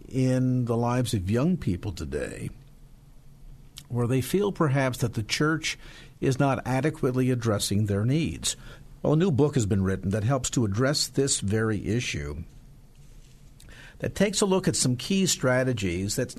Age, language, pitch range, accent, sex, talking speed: 50-69, English, 110-145 Hz, American, male, 155 wpm